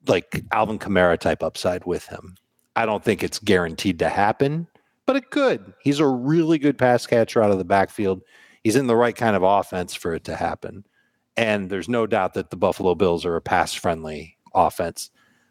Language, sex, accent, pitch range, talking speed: English, male, American, 105-140 Hz, 190 wpm